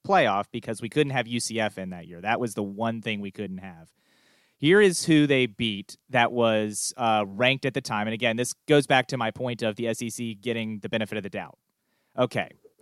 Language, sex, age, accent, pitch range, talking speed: English, male, 30-49, American, 105-130 Hz, 220 wpm